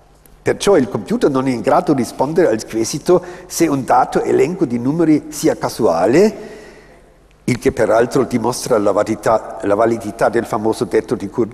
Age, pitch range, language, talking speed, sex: 50-69, 135-185 Hz, Italian, 155 wpm, male